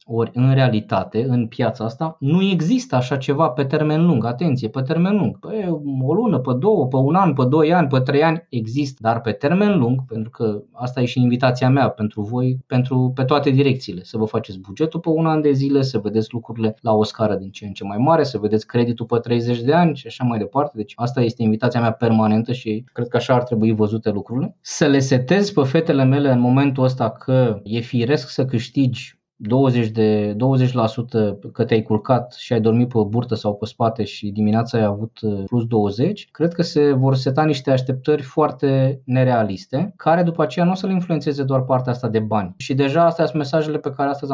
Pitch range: 115-150 Hz